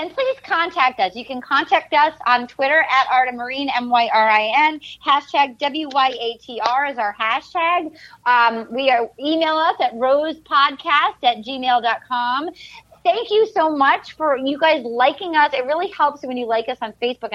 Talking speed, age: 155 wpm, 30-49